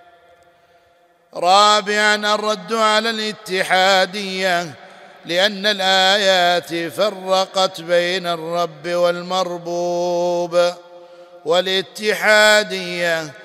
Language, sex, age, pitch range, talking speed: Arabic, male, 50-69, 175-190 Hz, 50 wpm